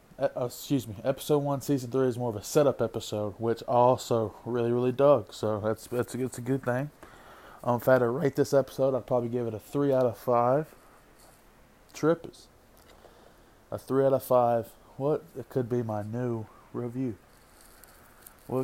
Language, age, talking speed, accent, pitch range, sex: English, 20-39, 185 wpm, American, 115-135 Hz, male